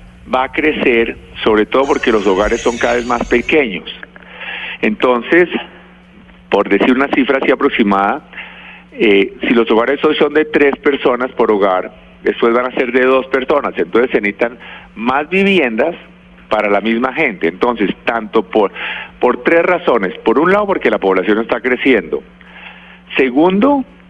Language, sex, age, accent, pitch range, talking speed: Spanish, male, 50-69, Colombian, 110-170 Hz, 155 wpm